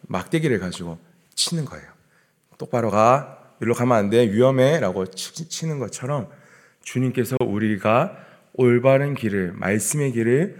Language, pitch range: Korean, 95-145 Hz